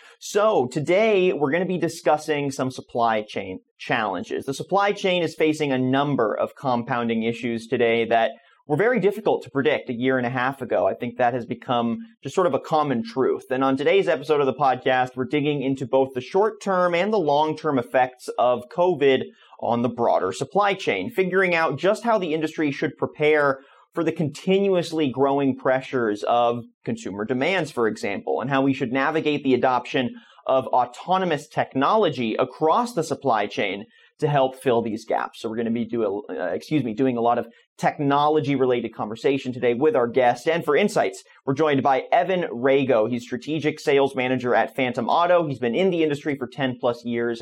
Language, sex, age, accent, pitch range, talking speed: English, male, 30-49, American, 125-160 Hz, 185 wpm